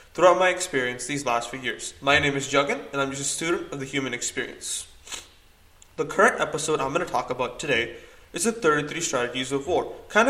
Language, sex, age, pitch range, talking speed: English, male, 20-39, 125-175 Hz, 210 wpm